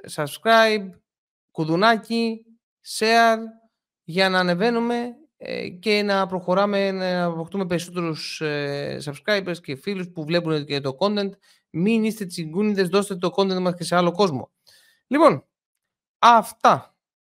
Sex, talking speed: male, 115 wpm